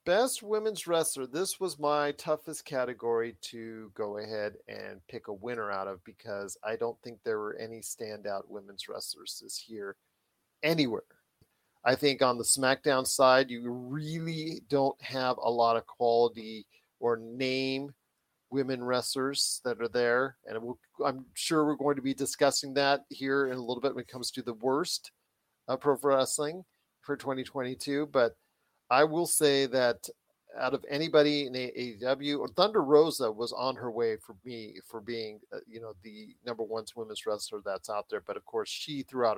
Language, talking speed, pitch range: English, 170 wpm, 115-145 Hz